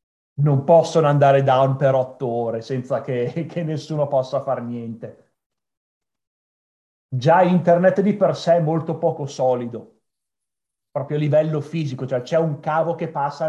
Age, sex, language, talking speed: 30-49, male, Italian, 145 wpm